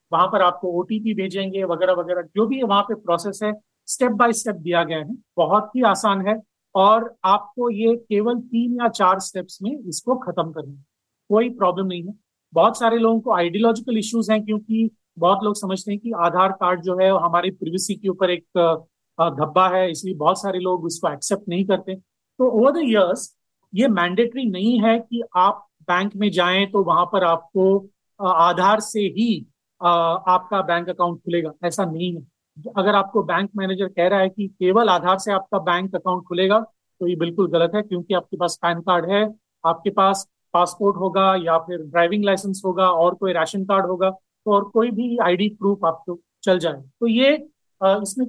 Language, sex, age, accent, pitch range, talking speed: Hindi, male, 40-59, native, 180-215 Hz, 185 wpm